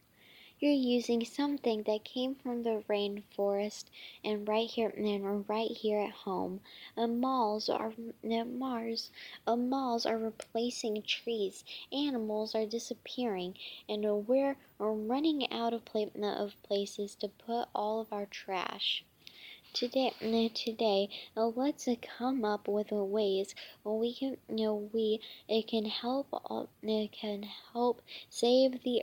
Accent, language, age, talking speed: American, English, 10-29, 145 wpm